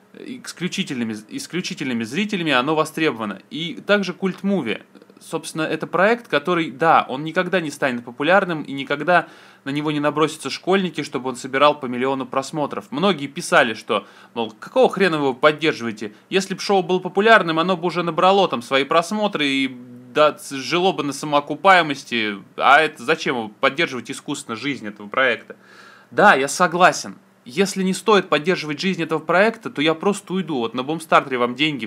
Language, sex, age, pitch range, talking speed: Russian, male, 20-39, 130-185 Hz, 160 wpm